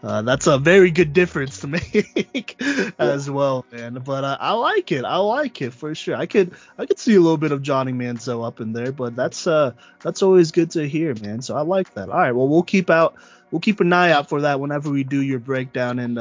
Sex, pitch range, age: male, 125-155 Hz, 20-39